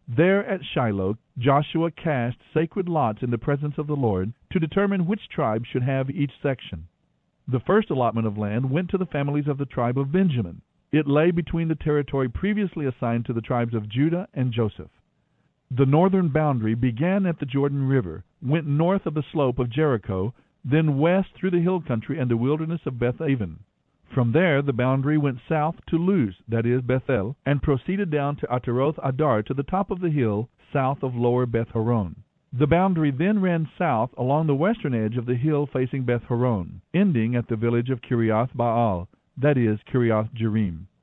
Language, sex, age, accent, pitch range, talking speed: English, male, 50-69, American, 120-155 Hz, 185 wpm